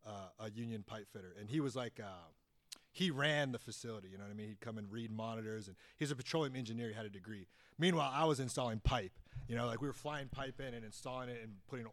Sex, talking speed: male, 255 wpm